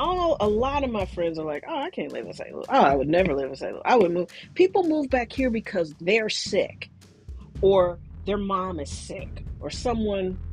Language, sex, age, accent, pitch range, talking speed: English, female, 40-59, American, 170-235 Hz, 230 wpm